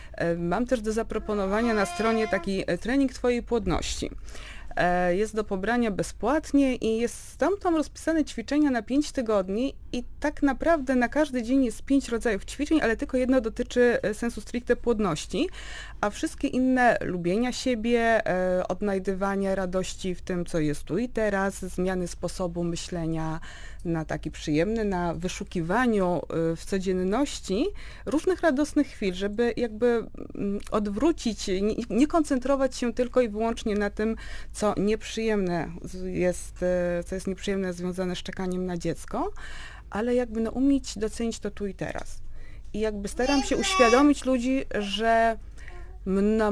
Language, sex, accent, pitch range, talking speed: Polish, female, native, 180-240 Hz, 135 wpm